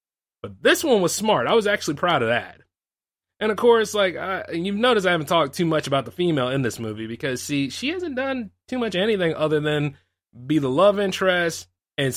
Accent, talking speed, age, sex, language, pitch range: American, 215 wpm, 20-39, male, English, 120-185 Hz